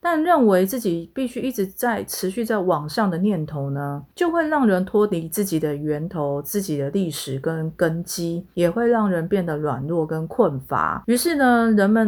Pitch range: 160-220 Hz